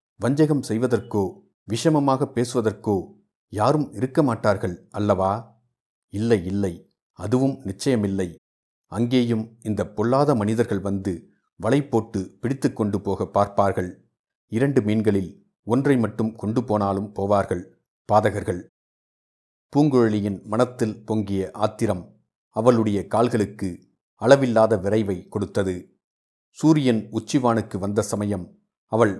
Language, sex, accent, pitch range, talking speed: Tamil, male, native, 100-120 Hz, 90 wpm